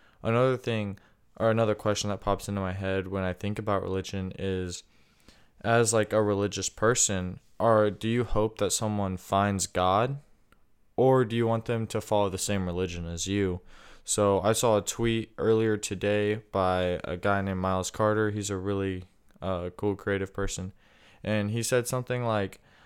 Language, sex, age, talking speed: English, male, 20-39, 175 wpm